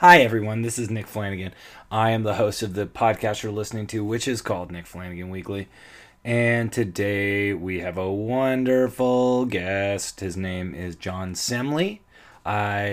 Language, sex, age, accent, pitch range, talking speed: English, male, 30-49, American, 90-120 Hz, 160 wpm